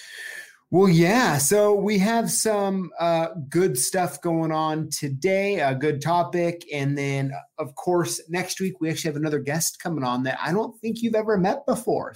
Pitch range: 130-200 Hz